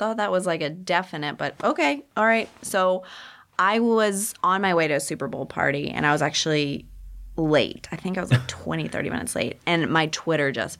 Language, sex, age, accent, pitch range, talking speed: English, female, 20-39, American, 180-290 Hz, 220 wpm